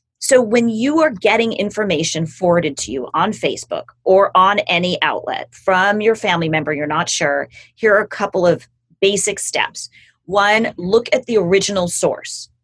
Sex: female